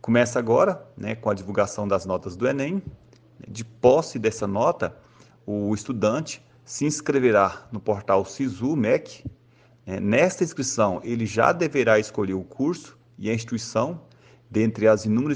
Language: Portuguese